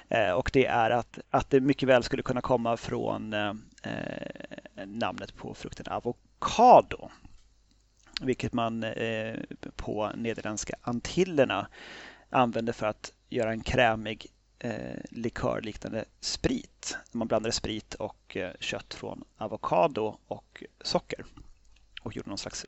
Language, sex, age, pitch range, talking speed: Swedish, male, 30-49, 110-135 Hz, 120 wpm